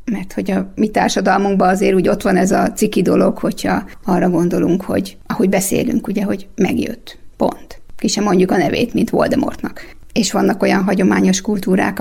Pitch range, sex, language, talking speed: 185-215 Hz, female, Hungarian, 175 wpm